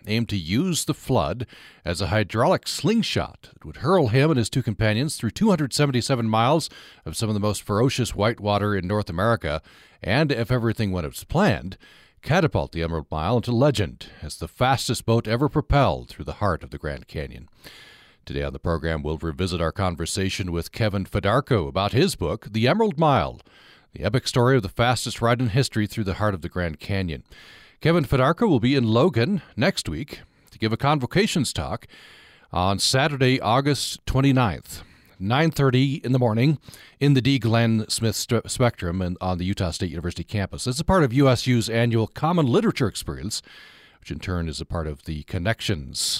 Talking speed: 185 wpm